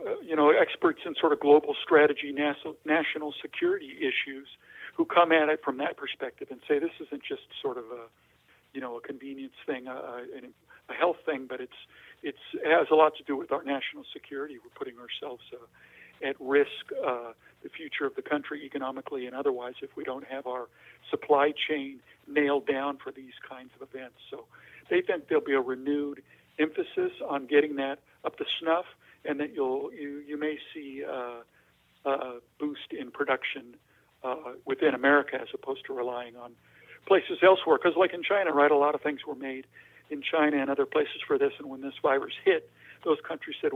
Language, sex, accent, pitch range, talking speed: English, male, American, 130-185 Hz, 195 wpm